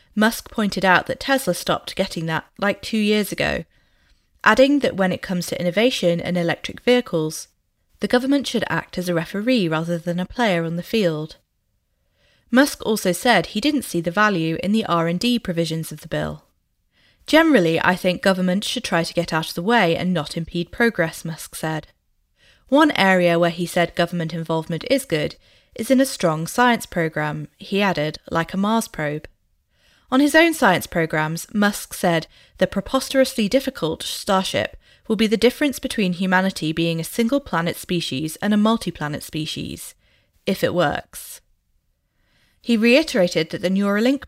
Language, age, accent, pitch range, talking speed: English, 20-39, British, 165-225 Hz, 165 wpm